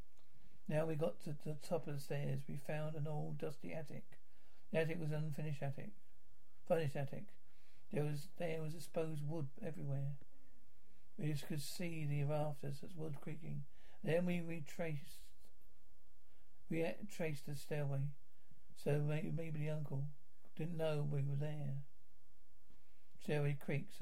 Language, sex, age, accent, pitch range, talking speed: English, male, 60-79, British, 140-160 Hz, 150 wpm